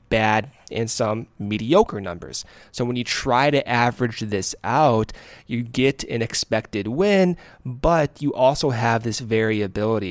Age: 20-39